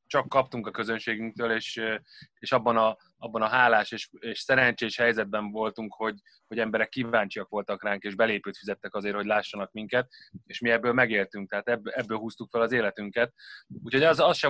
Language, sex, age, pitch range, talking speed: Hungarian, male, 20-39, 105-120 Hz, 175 wpm